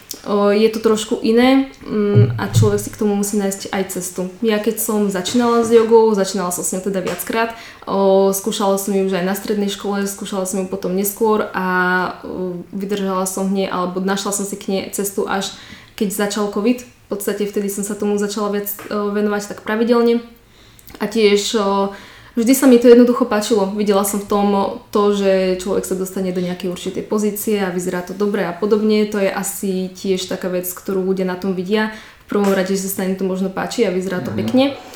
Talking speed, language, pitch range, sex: 195 wpm, Slovak, 190-210 Hz, female